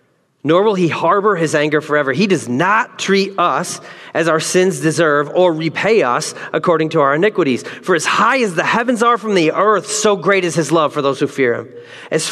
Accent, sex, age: American, male, 30-49